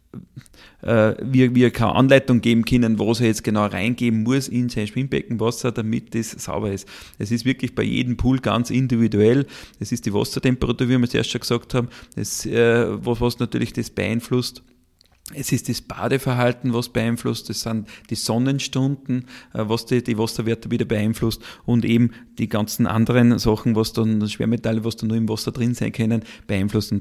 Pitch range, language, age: 110-125 Hz, German, 40-59